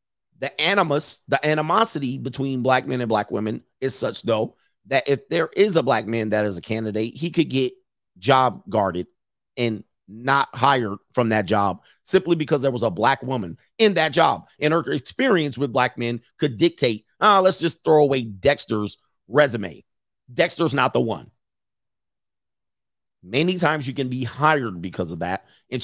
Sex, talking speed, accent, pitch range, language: male, 170 wpm, American, 110-140 Hz, English